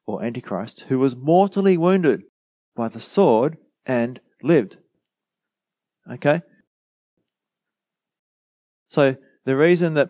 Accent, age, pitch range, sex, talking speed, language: Australian, 30-49, 105-140 Hz, male, 95 wpm, English